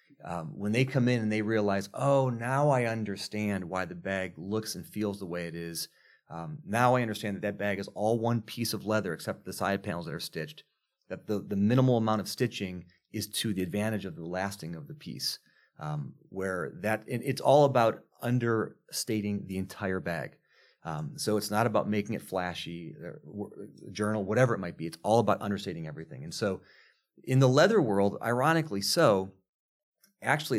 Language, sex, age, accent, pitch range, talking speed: English, male, 30-49, American, 95-120 Hz, 190 wpm